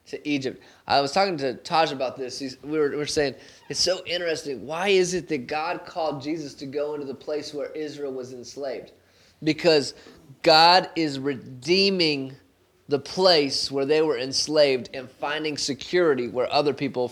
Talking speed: 165 wpm